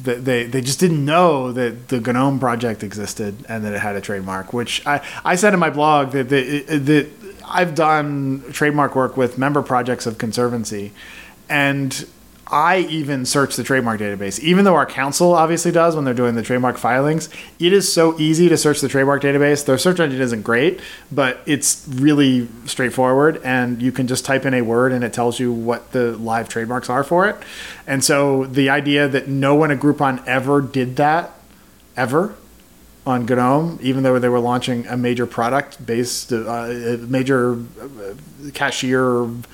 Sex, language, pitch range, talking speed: male, English, 120-145 Hz, 180 wpm